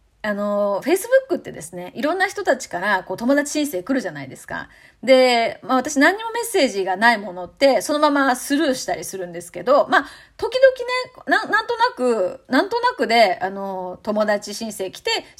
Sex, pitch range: female, 200-315 Hz